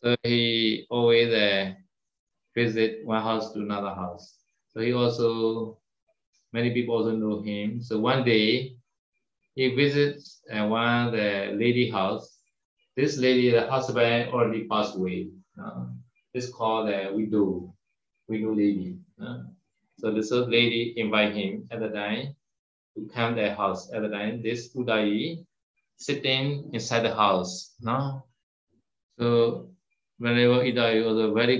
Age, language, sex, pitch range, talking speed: 20-39, Vietnamese, male, 105-125 Hz, 140 wpm